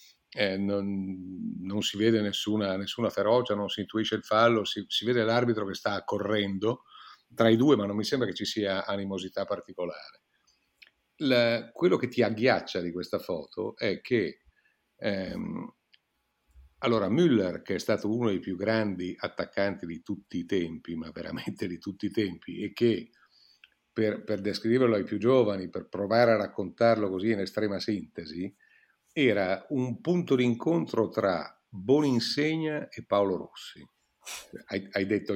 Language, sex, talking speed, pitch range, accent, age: Italian, male, 155 wpm, 95-115 Hz, native, 50-69